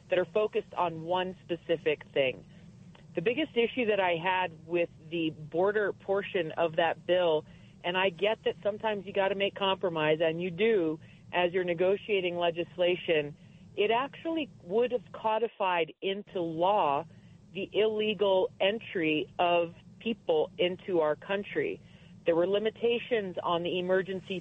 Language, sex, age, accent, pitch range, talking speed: English, female, 40-59, American, 165-210 Hz, 145 wpm